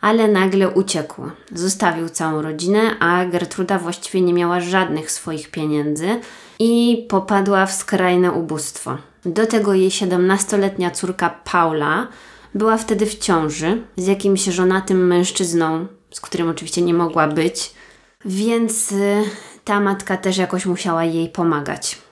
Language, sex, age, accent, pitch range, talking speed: Polish, female, 20-39, native, 165-195 Hz, 125 wpm